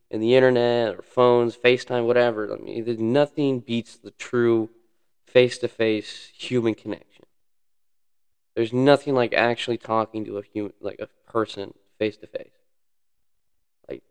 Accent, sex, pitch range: American, male, 110-130 Hz